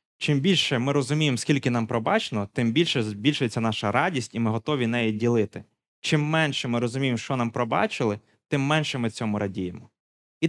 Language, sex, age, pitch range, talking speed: Ukrainian, male, 20-39, 115-155 Hz, 170 wpm